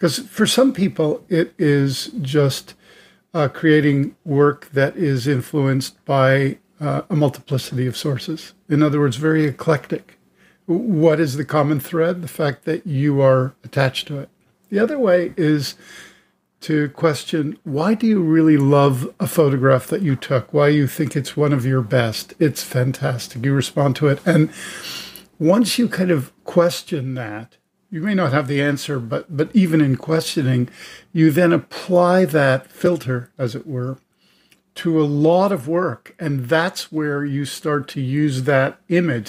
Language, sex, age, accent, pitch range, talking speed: English, male, 50-69, American, 135-165 Hz, 165 wpm